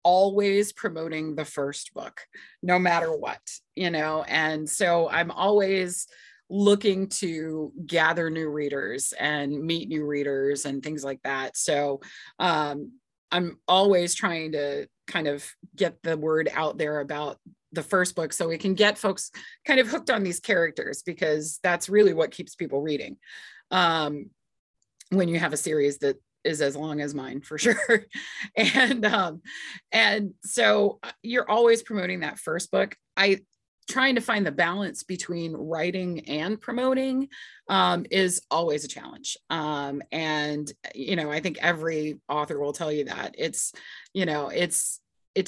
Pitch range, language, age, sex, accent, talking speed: 150-200 Hz, English, 30-49, female, American, 155 wpm